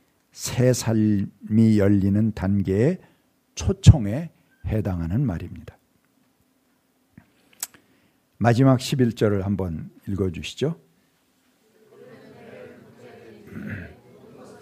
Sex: male